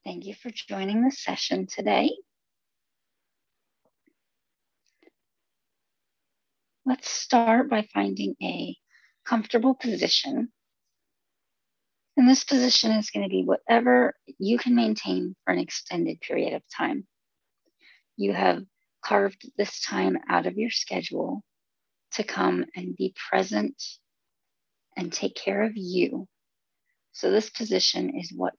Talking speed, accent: 115 wpm, American